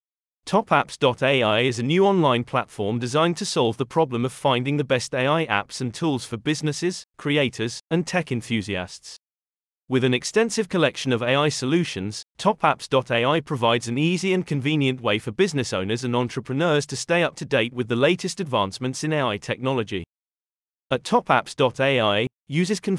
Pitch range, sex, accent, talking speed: 115-160 Hz, male, British, 155 wpm